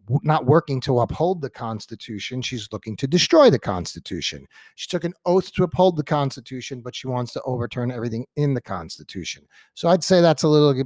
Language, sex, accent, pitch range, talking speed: English, male, American, 125-175 Hz, 195 wpm